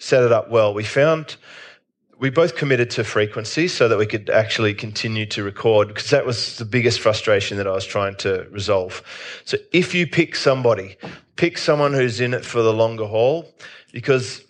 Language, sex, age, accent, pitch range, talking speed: English, male, 30-49, Australian, 110-135 Hz, 190 wpm